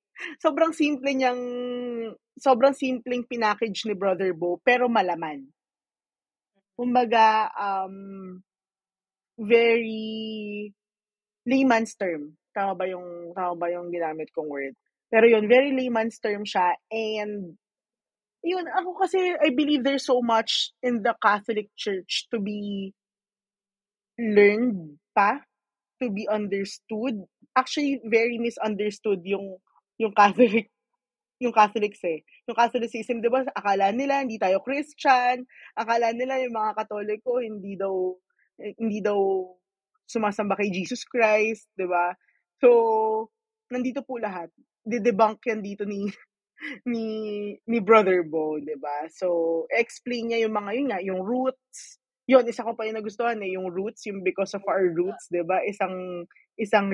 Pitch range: 195-245 Hz